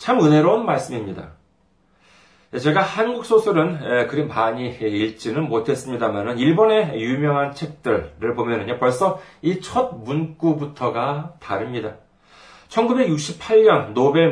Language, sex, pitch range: Korean, male, 115-165 Hz